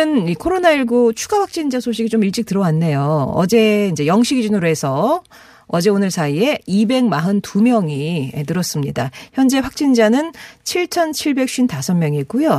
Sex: female